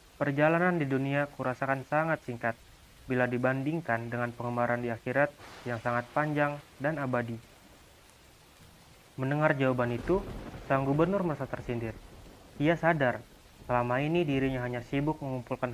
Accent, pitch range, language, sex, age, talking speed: native, 120-145 Hz, Indonesian, male, 30-49, 120 wpm